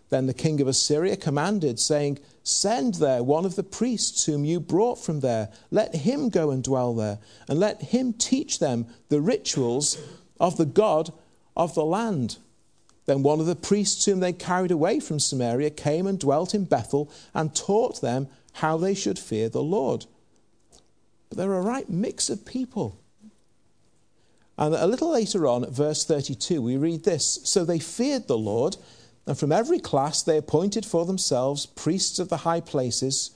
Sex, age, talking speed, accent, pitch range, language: male, 50-69, 175 wpm, British, 135-200 Hz, English